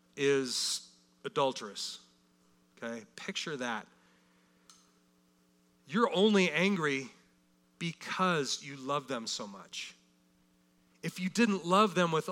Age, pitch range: 40-59, 130-180 Hz